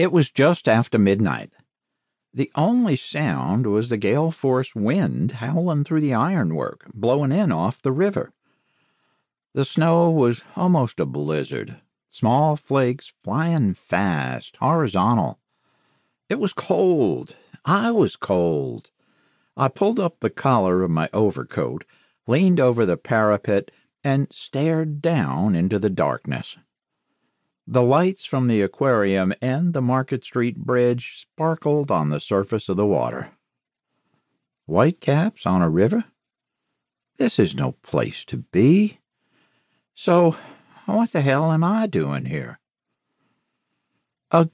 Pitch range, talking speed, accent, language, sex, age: 115-165 Hz, 125 wpm, American, English, male, 50-69